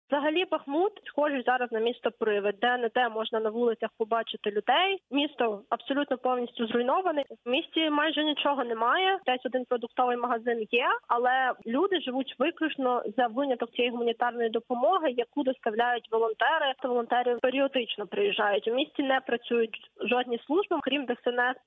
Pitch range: 225-275 Hz